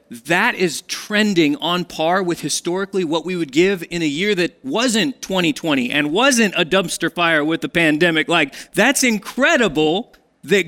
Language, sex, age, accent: English, male, 30-49, American